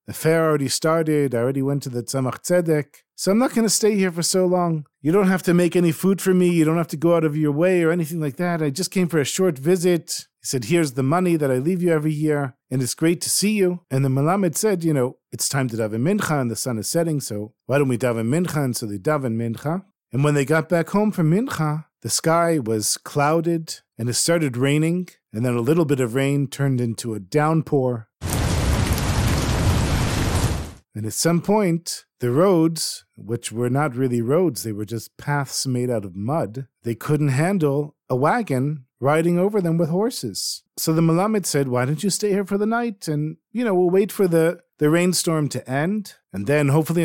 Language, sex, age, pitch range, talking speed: English, male, 40-59, 125-170 Hz, 225 wpm